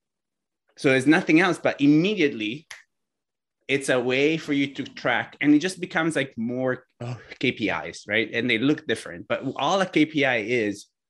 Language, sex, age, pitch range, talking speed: English, male, 20-39, 125-155 Hz, 160 wpm